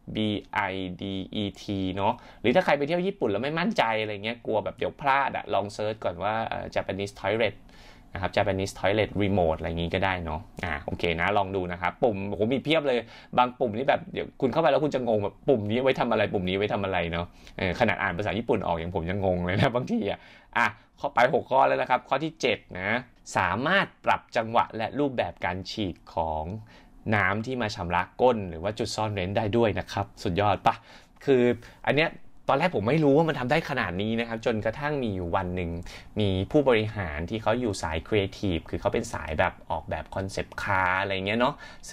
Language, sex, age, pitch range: Thai, male, 20-39, 95-120 Hz